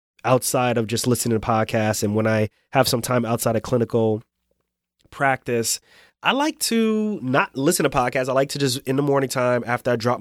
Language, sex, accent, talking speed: English, male, American, 200 wpm